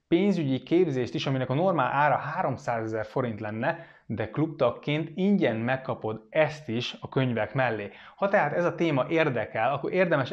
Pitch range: 120-165 Hz